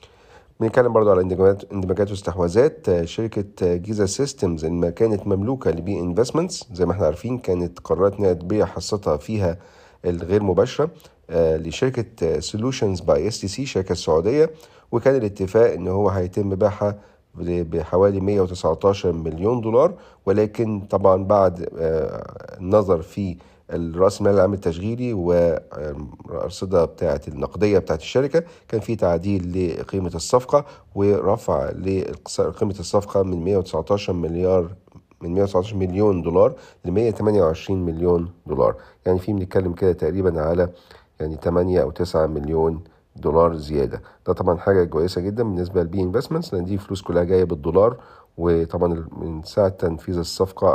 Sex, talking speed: male, 125 wpm